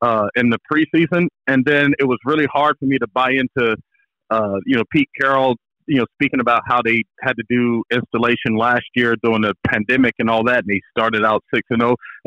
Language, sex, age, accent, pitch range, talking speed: English, male, 40-59, American, 120-150 Hz, 210 wpm